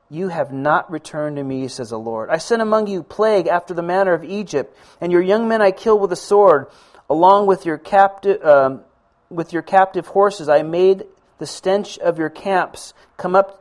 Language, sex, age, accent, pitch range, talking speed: Finnish, male, 40-59, American, 155-210 Hz, 205 wpm